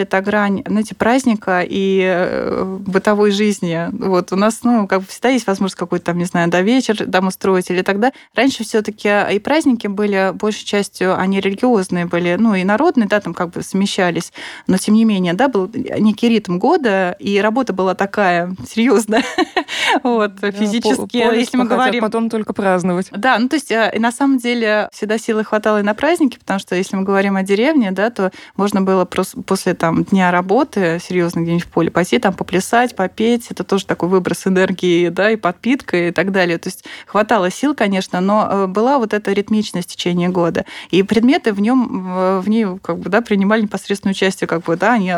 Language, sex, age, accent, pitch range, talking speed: Russian, female, 20-39, native, 185-225 Hz, 190 wpm